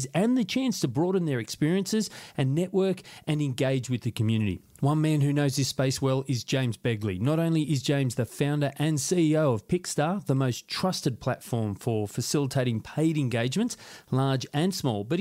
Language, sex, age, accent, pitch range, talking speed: English, male, 30-49, Australian, 120-160 Hz, 180 wpm